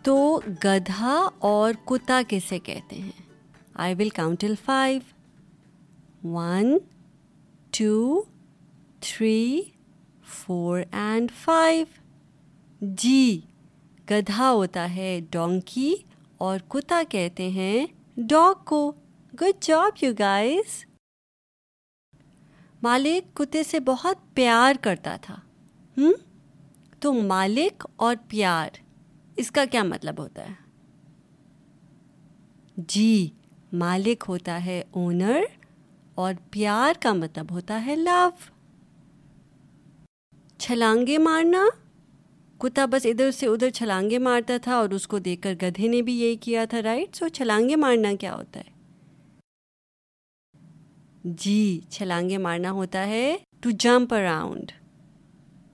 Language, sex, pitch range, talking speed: Urdu, female, 180-260 Hz, 110 wpm